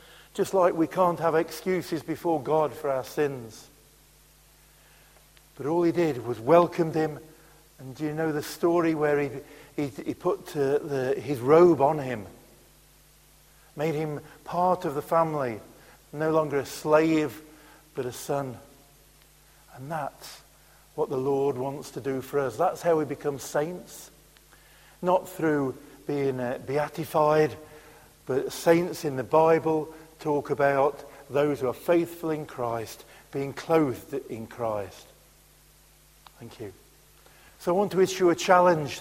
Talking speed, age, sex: 145 wpm, 50-69, male